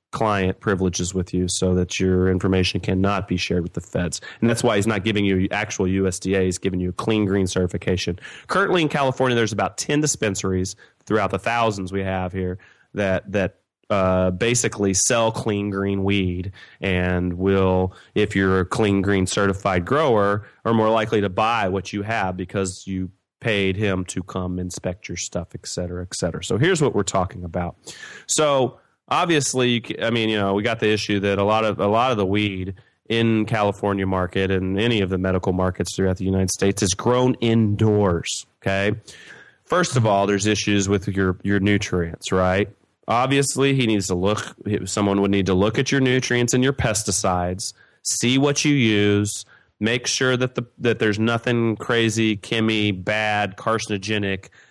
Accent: American